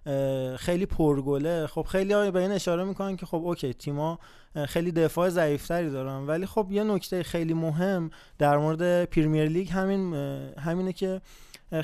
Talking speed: 145 wpm